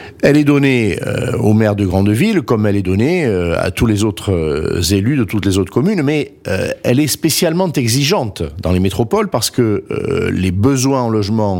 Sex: male